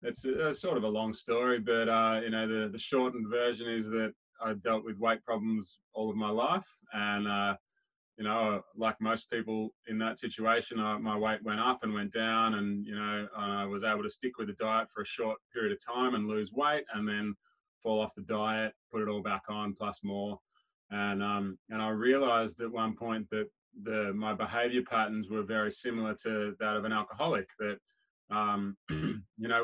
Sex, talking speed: male, 210 wpm